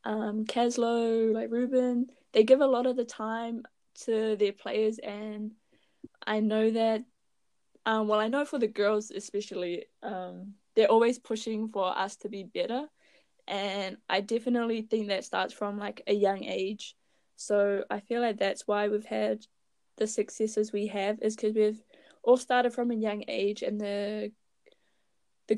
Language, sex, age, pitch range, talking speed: English, female, 10-29, 200-230 Hz, 165 wpm